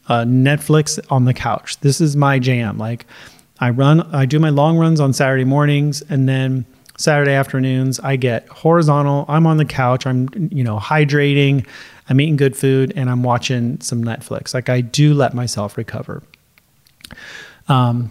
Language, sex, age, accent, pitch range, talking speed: English, male, 30-49, American, 130-155 Hz, 170 wpm